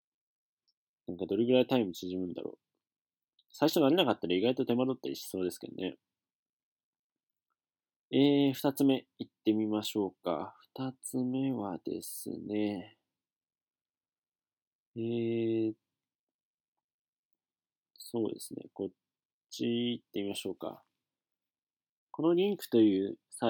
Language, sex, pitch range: Japanese, male, 95-130 Hz